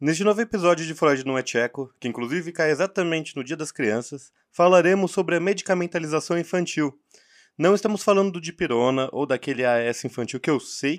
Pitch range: 130-175 Hz